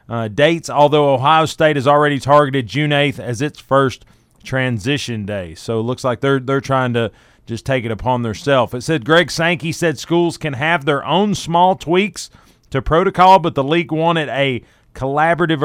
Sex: male